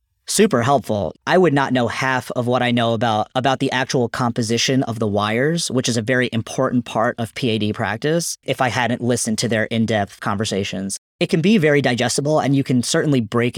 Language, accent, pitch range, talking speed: English, American, 115-135 Hz, 205 wpm